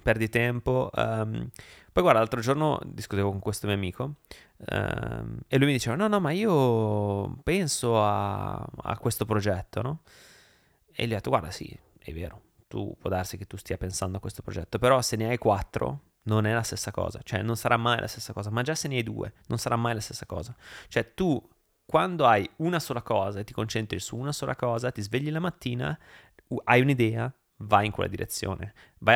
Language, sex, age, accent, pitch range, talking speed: Italian, male, 30-49, native, 105-135 Hz, 205 wpm